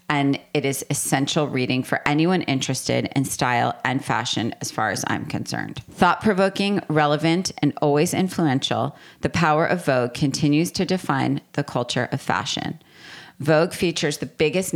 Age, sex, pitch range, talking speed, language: 30-49, female, 135-160 Hz, 150 wpm, English